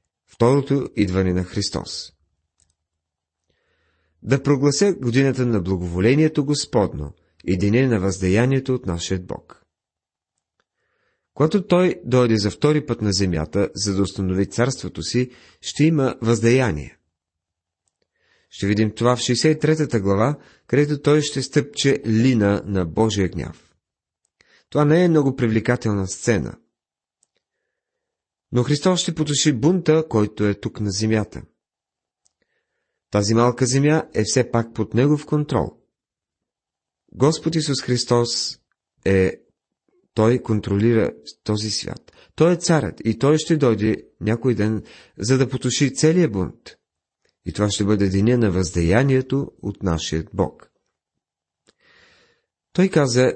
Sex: male